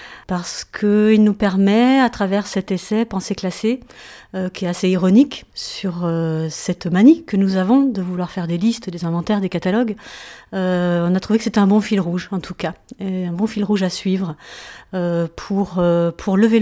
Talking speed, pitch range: 205 wpm, 180-220 Hz